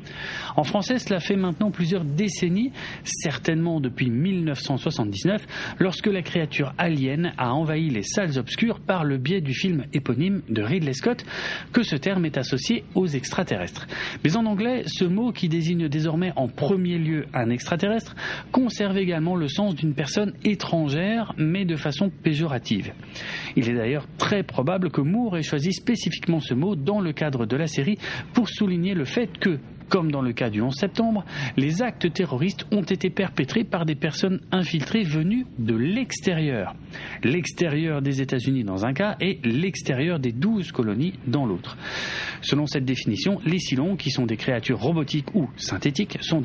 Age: 40-59